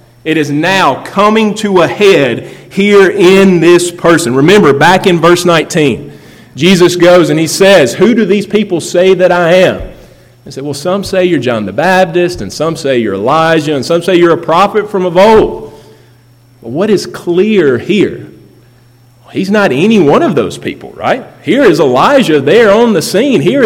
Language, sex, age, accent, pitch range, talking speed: English, male, 40-59, American, 140-185 Hz, 185 wpm